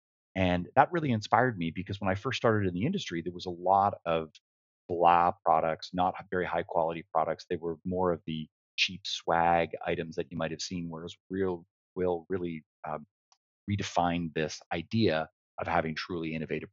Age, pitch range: 30-49, 80-90 Hz